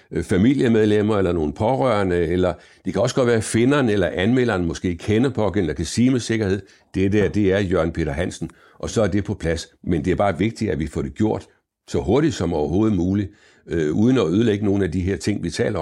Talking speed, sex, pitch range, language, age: 230 wpm, male, 90-110 Hz, Danish, 60-79